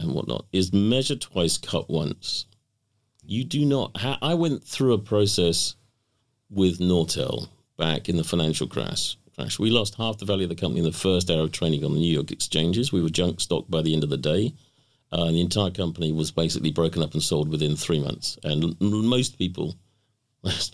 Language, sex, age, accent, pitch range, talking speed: English, male, 50-69, British, 90-120 Hz, 210 wpm